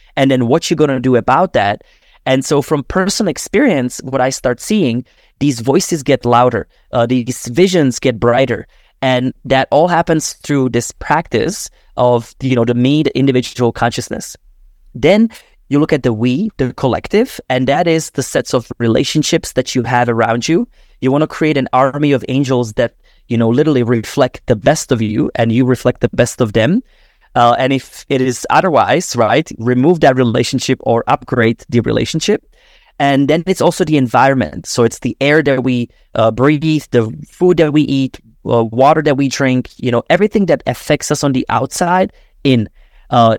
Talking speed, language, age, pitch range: 185 wpm, English, 20-39, 120-150 Hz